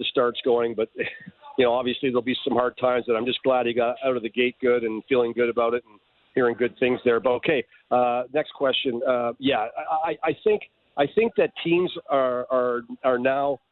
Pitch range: 125-140 Hz